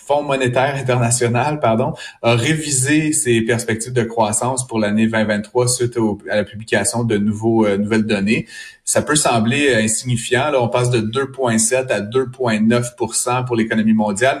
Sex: male